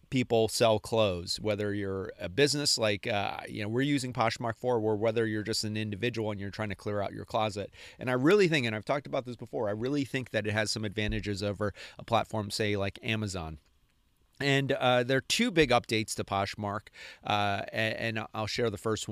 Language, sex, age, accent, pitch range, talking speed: English, male, 30-49, American, 105-125 Hz, 215 wpm